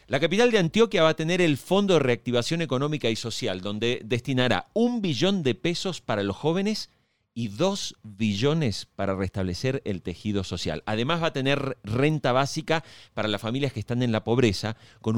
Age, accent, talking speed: 40-59, Argentinian, 180 wpm